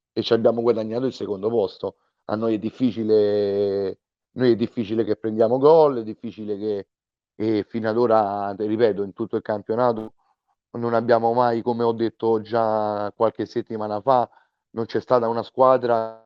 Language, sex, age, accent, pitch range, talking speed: Italian, male, 40-59, native, 105-120 Hz, 160 wpm